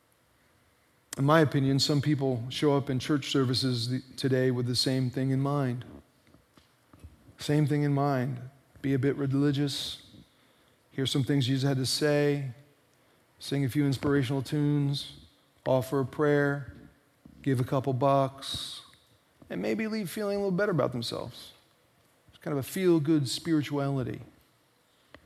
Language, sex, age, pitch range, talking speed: English, male, 40-59, 130-150 Hz, 140 wpm